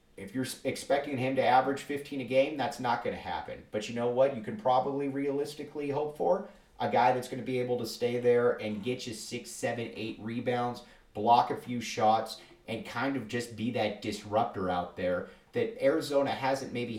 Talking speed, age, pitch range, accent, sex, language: 205 wpm, 30-49, 105-135 Hz, American, male, English